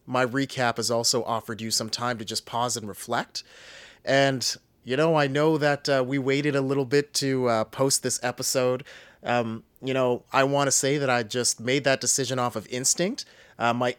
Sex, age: male, 30-49